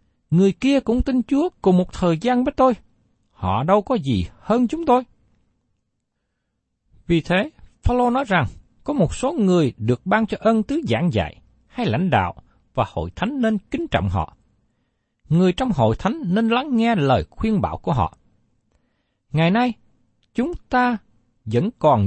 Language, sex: Vietnamese, male